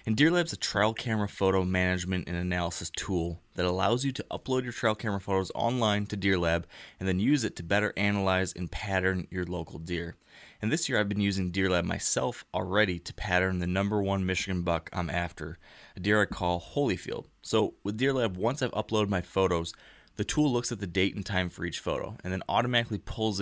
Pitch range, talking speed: 90-105 Hz, 205 wpm